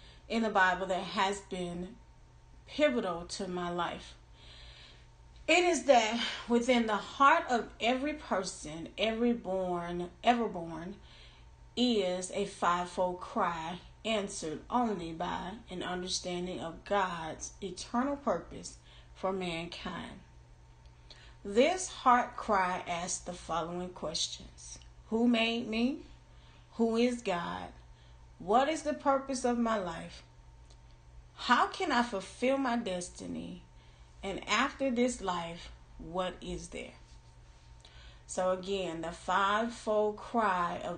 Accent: American